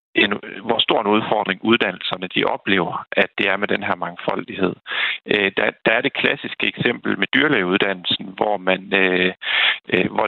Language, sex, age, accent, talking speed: Danish, male, 40-59, native, 145 wpm